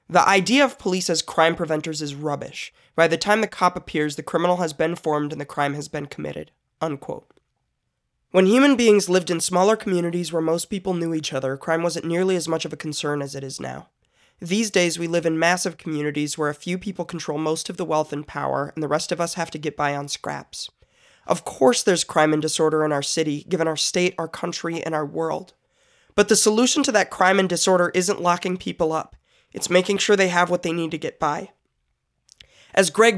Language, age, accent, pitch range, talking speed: English, 20-39, American, 155-190 Hz, 220 wpm